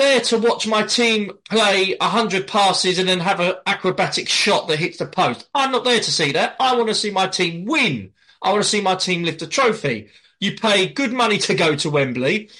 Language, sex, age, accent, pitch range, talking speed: English, male, 20-39, British, 140-190 Hz, 235 wpm